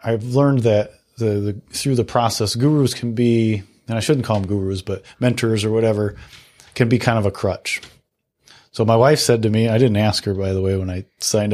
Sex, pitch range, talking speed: male, 105-125 Hz, 215 wpm